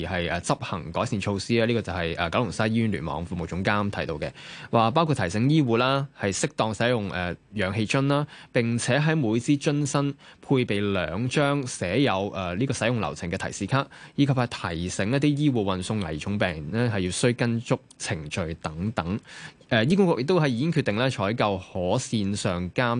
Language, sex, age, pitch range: Chinese, male, 20-39, 95-130 Hz